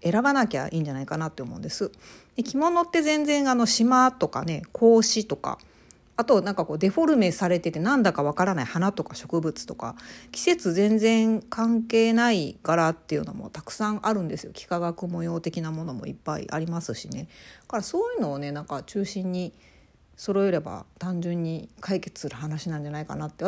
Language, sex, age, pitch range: Japanese, female, 40-59, 170-235 Hz